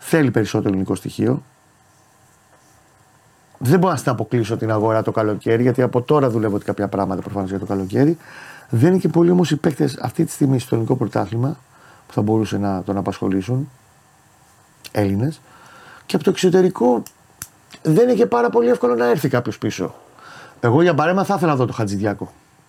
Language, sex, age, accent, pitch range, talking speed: Greek, male, 30-49, native, 105-150 Hz, 170 wpm